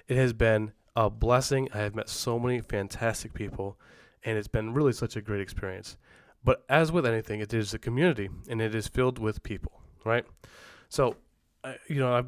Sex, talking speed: male, 190 wpm